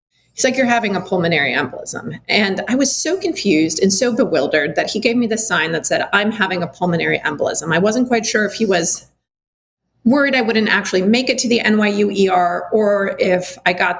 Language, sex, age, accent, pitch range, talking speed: English, female, 30-49, American, 175-220 Hz, 210 wpm